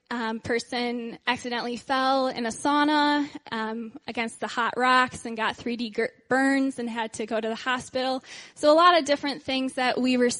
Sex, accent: female, American